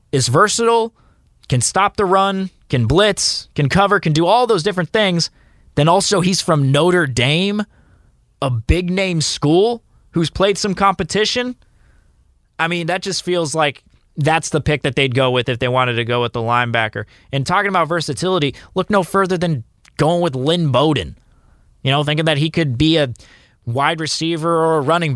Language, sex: English, male